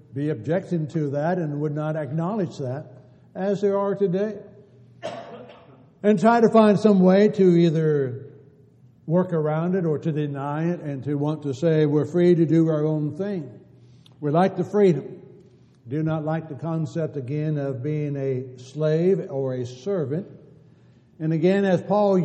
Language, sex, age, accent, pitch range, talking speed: English, male, 60-79, American, 145-180 Hz, 165 wpm